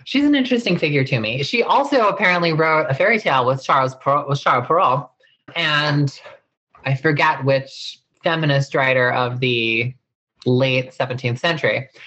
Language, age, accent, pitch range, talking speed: English, 20-39, American, 130-170 Hz, 140 wpm